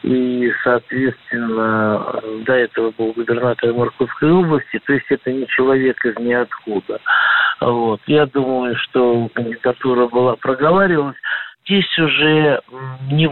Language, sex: Russian, male